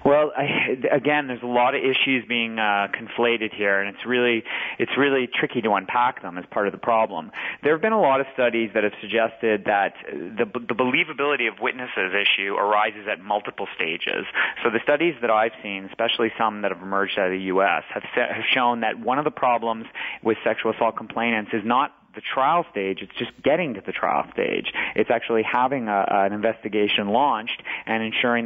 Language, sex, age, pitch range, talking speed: English, male, 30-49, 105-125 Hz, 205 wpm